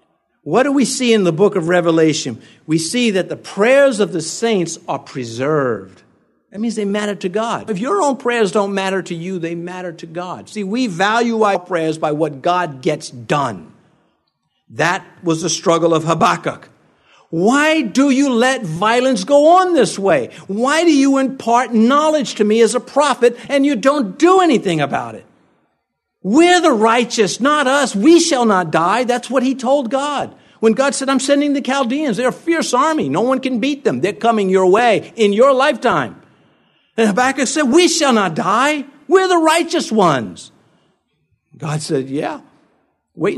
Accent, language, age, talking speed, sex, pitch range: American, English, 50-69, 180 wpm, male, 180-275 Hz